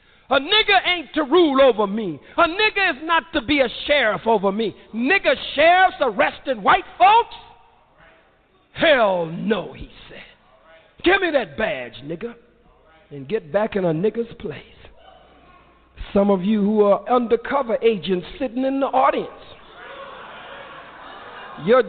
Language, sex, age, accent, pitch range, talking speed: English, male, 50-69, American, 200-295 Hz, 135 wpm